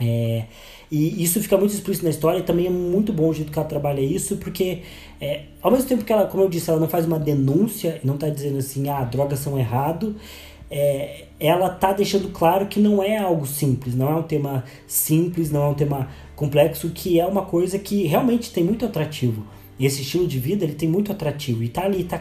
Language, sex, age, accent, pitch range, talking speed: Portuguese, male, 20-39, Brazilian, 135-170 Hz, 225 wpm